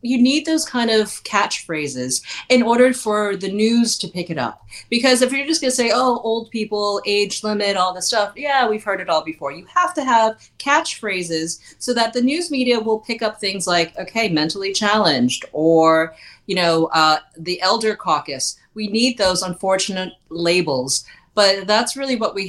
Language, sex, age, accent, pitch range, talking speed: English, female, 40-59, American, 175-245 Hz, 185 wpm